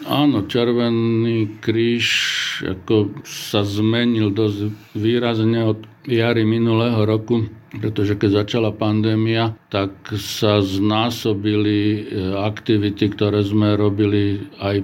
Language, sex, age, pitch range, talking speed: Slovak, male, 50-69, 100-110 Hz, 95 wpm